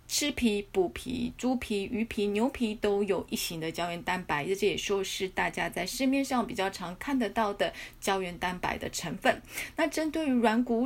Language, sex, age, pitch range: Chinese, female, 30-49, 190-240 Hz